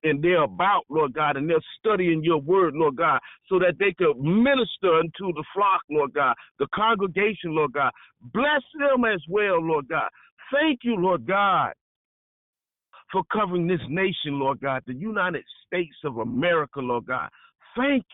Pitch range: 155-220 Hz